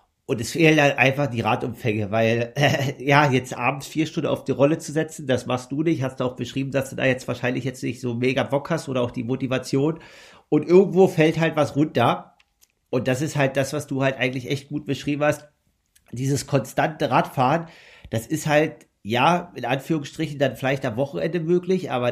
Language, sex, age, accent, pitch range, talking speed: German, male, 50-69, German, 130-155 Hz, 205 wpm